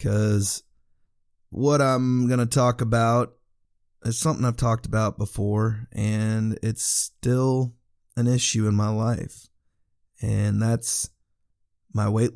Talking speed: 120 wpm